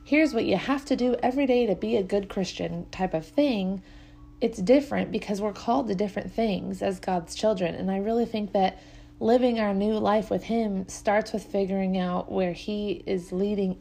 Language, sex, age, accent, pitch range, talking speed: English, female, 30-49, American, 175-215 Hz, 200 wpm